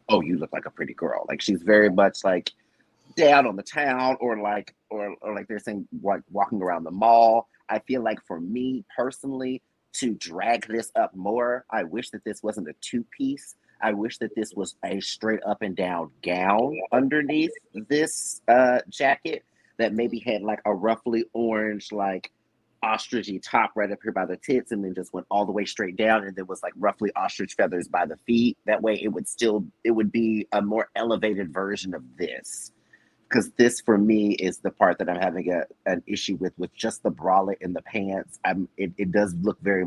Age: 30-49